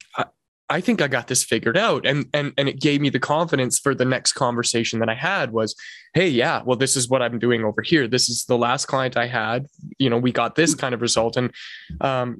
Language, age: English, 20-39